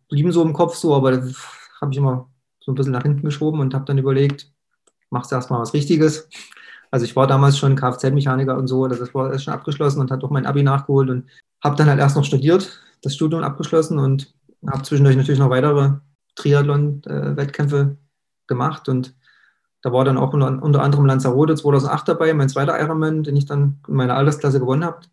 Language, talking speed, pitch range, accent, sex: German, 200 wpm, 135-150 Hz, German, male